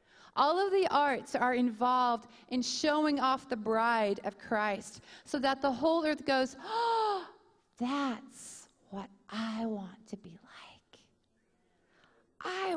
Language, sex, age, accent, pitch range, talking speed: English, female, 40-59, American, 210-255 Hz, 130 wpm